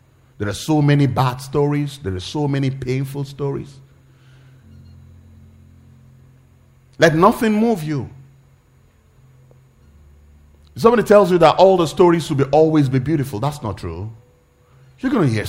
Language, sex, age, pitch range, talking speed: English, male, 30-49, 90-125 Hz, 130 wpm